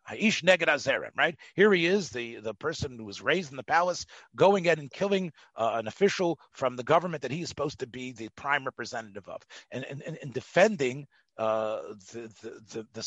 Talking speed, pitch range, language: 200 wpm, 125-180 Hz, English